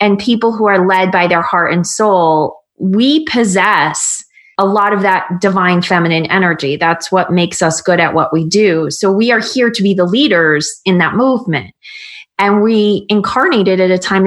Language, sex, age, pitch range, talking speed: English, female, 20-39, 180-220 Hz, 195 wpm